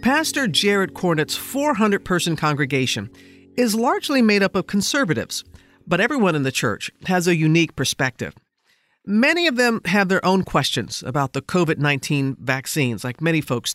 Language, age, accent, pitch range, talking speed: English, 50-69, American, 140-210 Hz, 150 wpm